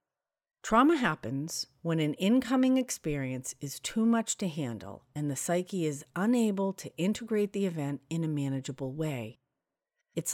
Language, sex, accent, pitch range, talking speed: English, female, American, 140-215 Hz, 145 wpm